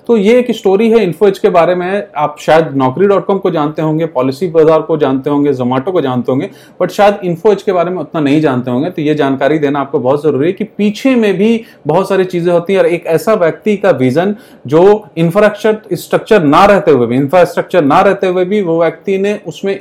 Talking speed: 225 wpm